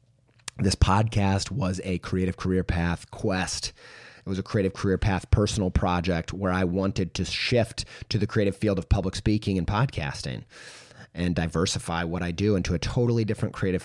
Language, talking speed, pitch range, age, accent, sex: English, 175 wpm, 90-115 Hz, 30-49, American, male